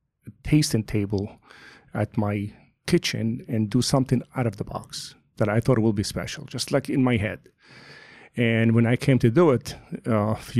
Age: 40-59